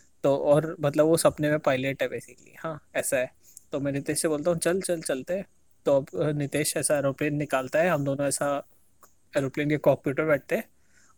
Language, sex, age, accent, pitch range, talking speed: Hindi, male, 20-39, native, 140-170 Hz, 200 wpm